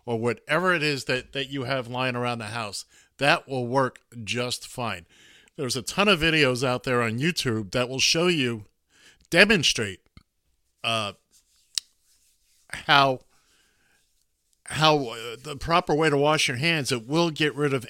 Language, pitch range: English, 115-145 Hz